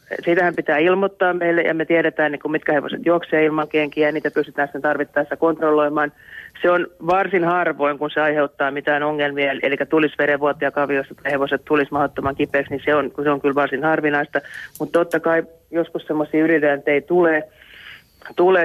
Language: Finnish